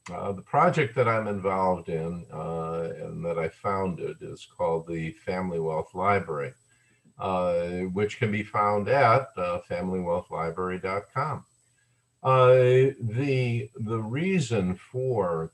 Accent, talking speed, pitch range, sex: American, 120 wpm, 85-115 Hz, male